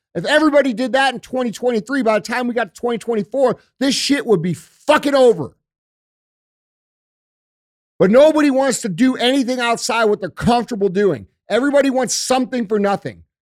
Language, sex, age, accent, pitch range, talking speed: English, male, 40-59, American, 210-275 Hz, 155 wpm